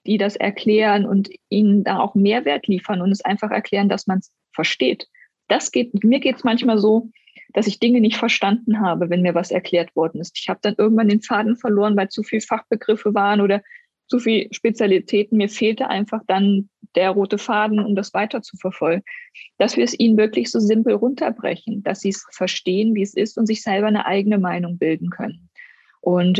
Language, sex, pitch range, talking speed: German, female, 195-230 Hz, 200 wpm